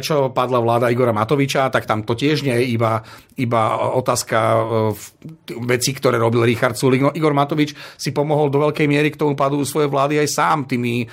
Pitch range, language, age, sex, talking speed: 125-145 Hz, Slovak, 40-59, male, 185 wpm